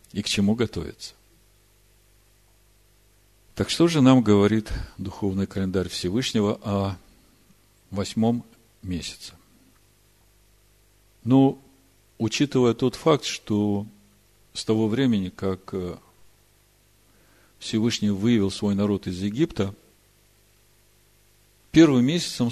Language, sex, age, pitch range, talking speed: Russian, male, 50-69, 95-115 Hz, 85 wpm